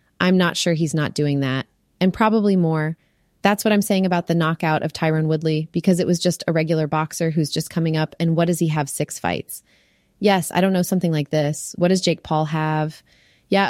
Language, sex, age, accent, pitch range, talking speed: English, female, 20-39, American, 155-175 Hz, 225 wpm